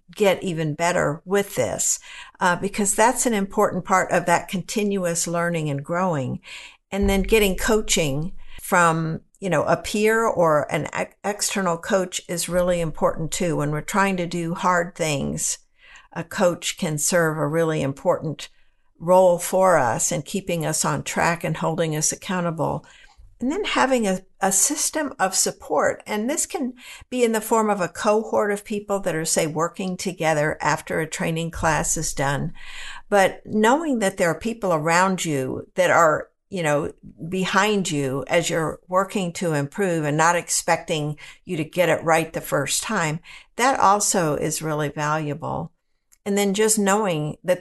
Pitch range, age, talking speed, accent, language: 165-200 Hz, 60-79, 165 wpm, American, English